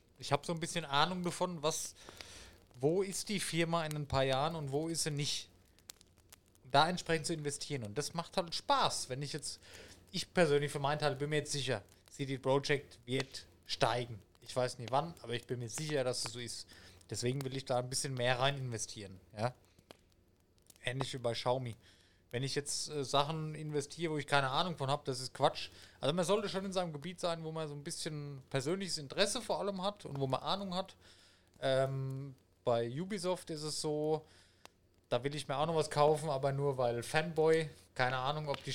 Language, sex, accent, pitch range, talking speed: German, male, German, 120-165 Hz, 210 wpm